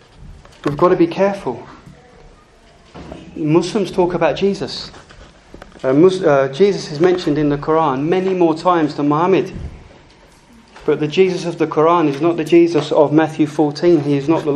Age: 30-49